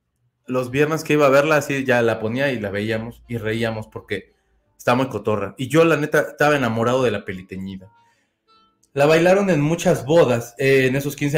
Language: Spanish